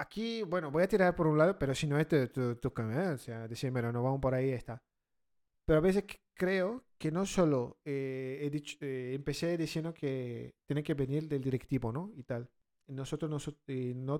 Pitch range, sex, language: 135-210 Hz, male, Spanish